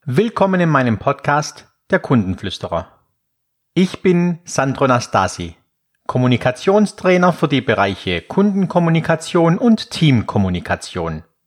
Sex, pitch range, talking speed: male, 115-165 Hz, 90 wpm